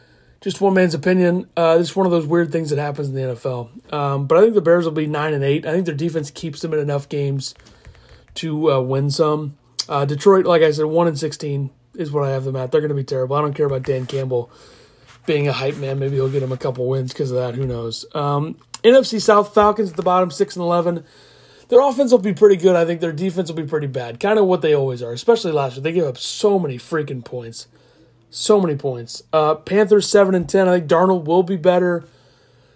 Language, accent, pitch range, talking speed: English, American, 140-175 Hz, 240 wpm